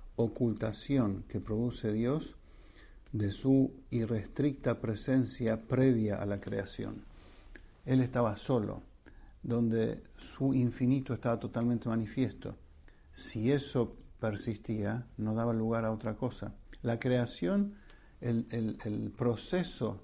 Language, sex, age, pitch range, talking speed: English, male, 50-69, 110-130 Hz, 110 wpm